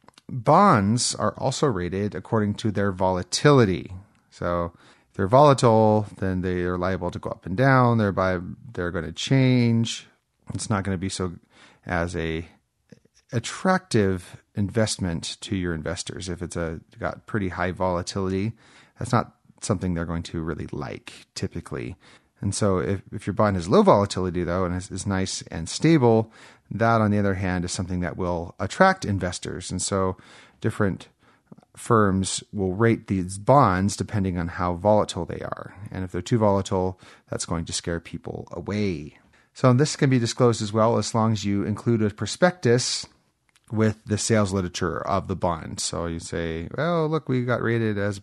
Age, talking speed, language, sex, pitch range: 30-49, 170 wpm, English, male, 90-115 Hz